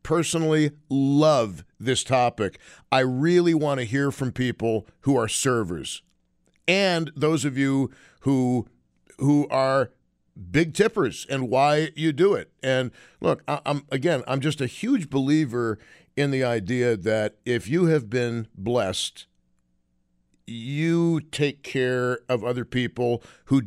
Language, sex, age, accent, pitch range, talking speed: English, male, 50-69, American, 125-155 Hz, 135 wpm